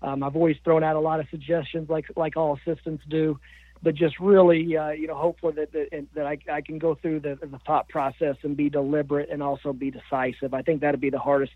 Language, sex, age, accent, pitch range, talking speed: English, male, 40-59, American, 145-165 Hz, 245 wpm